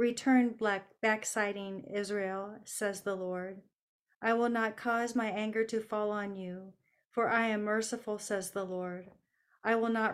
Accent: American